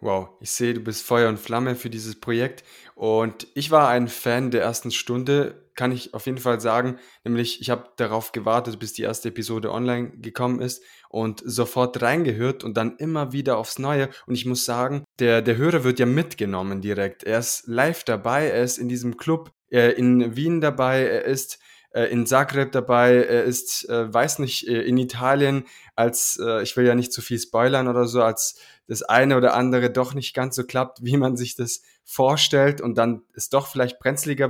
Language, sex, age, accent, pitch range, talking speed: German, male, 20-39, German, 120-135 Hz, 195 wpm